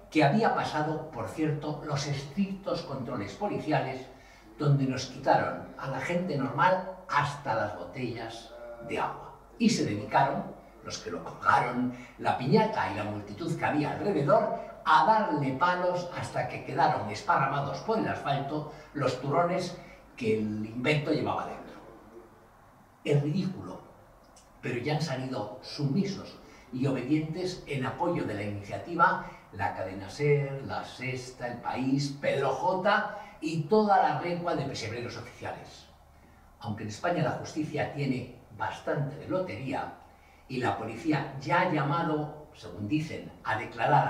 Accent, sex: Spanish, male